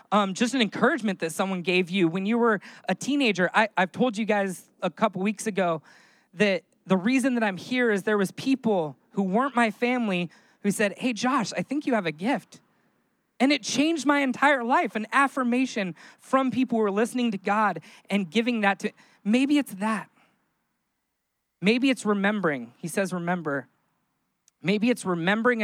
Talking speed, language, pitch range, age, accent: 180 wpm, English, 180-225 Hz, 20-39, American